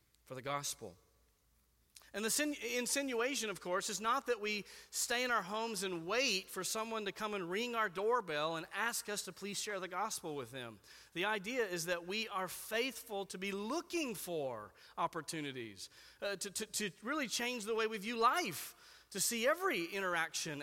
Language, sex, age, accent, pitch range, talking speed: English, male, 40-59, American, 160-215 Hz, 185 wpm